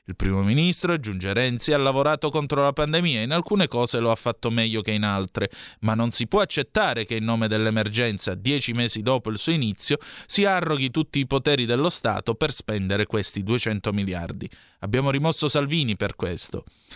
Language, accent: Italian, native